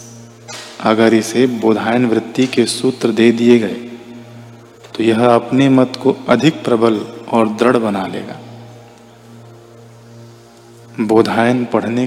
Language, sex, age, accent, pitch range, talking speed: Hindi, male, 40-59, native, 115-120 Hz, 110 wpm